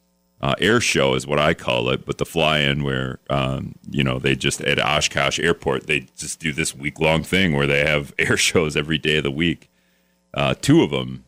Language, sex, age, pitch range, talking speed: English, male, 40-59, 65-80 Hz, 215 wpm